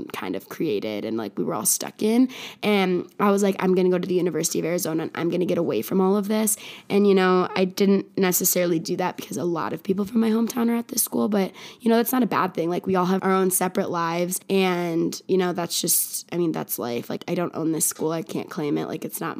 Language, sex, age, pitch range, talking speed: English, female, 20-39, 180-225 Hz, 275 wpm